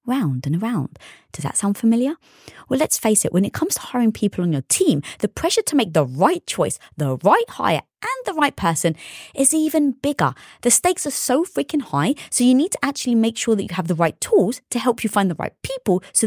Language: English